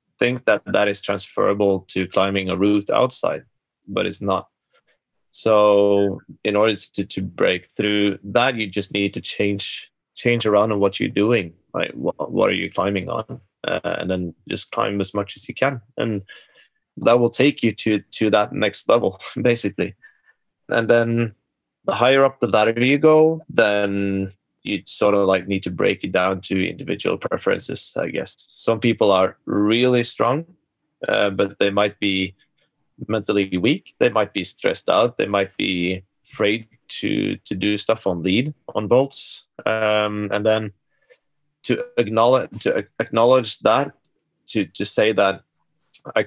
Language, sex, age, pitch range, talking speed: English, male, 20-39, 95-115 Hz, 165 wpm